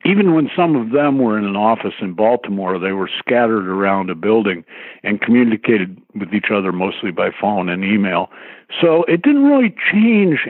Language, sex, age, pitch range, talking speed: English, male, 60-79, 100-140 Hz, 185 wpm